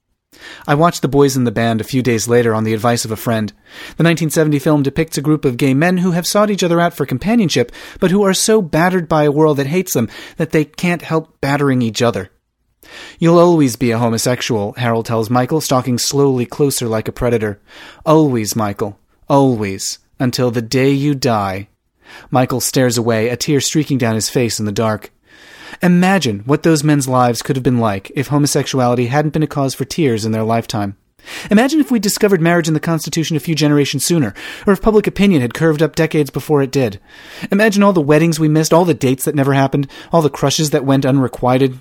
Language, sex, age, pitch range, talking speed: English, male, 30-49, 120-160 Hz, 210 wpm